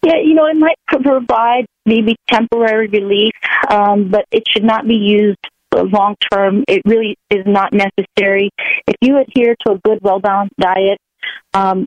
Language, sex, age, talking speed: English, female, 40-59, 155 wpm